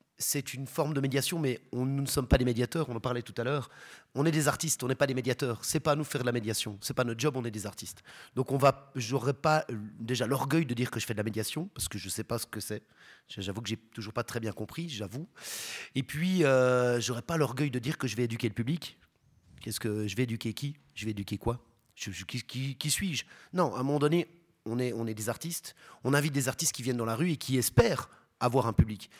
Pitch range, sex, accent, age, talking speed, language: 115-140 Hz, male, French, 30-49, 280 wpm, French